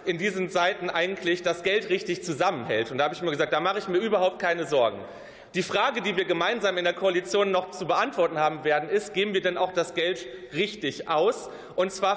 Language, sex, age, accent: German, male, 30-49, German